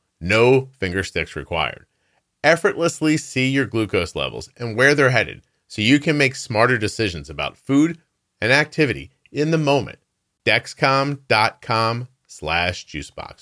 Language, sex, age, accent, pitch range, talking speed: English, male, 30-49, American, 95-135 Hz, 125 wpm